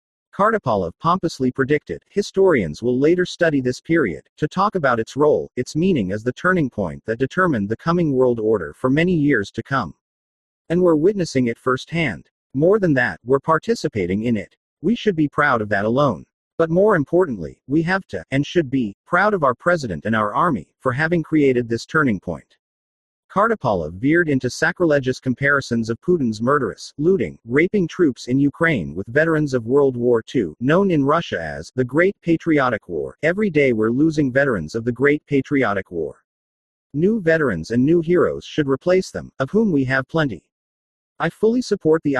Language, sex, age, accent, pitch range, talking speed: English, male, 50-69, American, 120-165 Hz, 180 wpm